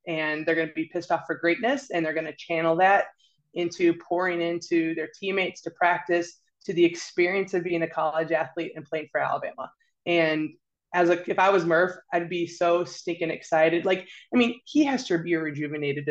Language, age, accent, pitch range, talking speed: English, 20-39, American, 155-180 Hz, 195 wpm